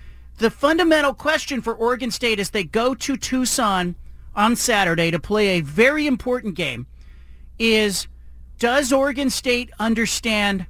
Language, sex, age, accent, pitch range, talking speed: English, male, 40-59, American, 205-265 Hz, 135 wpm